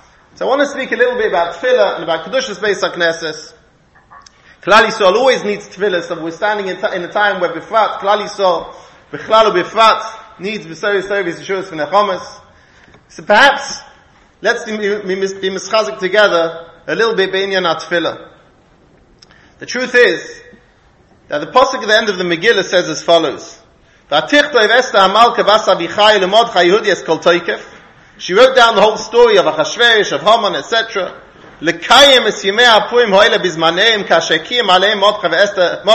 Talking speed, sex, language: 130 wpm, male, English